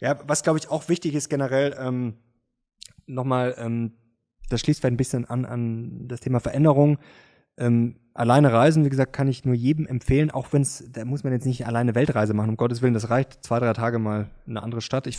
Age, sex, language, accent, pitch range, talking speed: 20-39, male, German, German, 120-140 Hz, 215 wpm